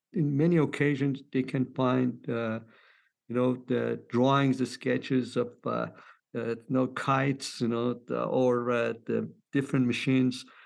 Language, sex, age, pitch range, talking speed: English, male, 50-69, 120-140 Hz, 150 wpm